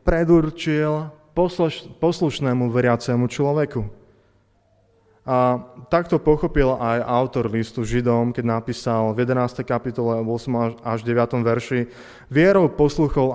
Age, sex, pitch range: 20-39, male, 115-150 Hz